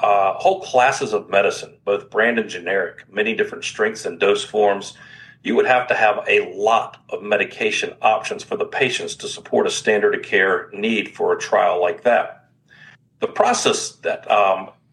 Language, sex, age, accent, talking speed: English, male, 50-69, American, 175 wpm